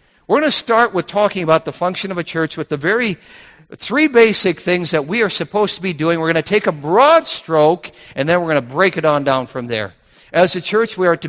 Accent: American